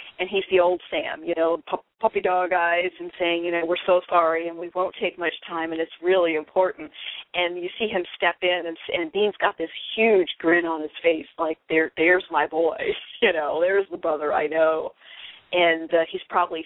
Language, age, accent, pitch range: English, 40-59, American, 160-180 Hz